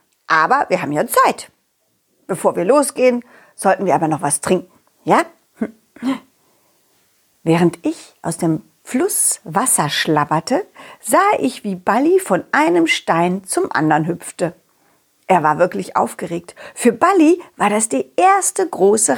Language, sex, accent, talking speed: German, female, German, 135 wpm